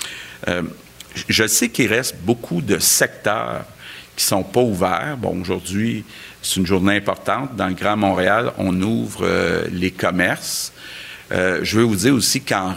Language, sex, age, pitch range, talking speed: French, male, 50-69, 90-105 Hz, 165 wpm